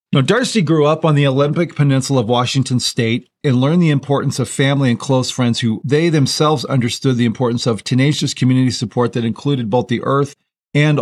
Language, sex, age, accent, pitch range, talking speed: English, male, 40-59, American, 115-140 Hz, 195 wpm